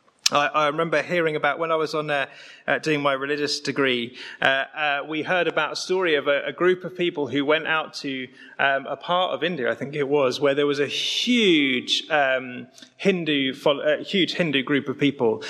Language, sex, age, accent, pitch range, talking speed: English, male, 30-49, British, 140-180 Hz, 215 wpm